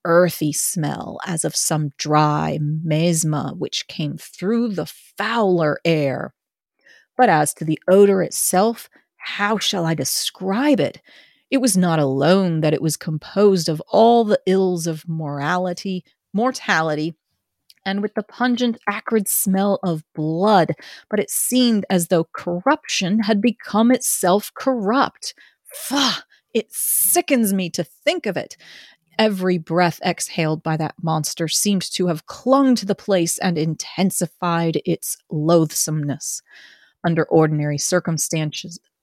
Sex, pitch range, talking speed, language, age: female, 155-205 Hz, 130 wpm, English, 30-49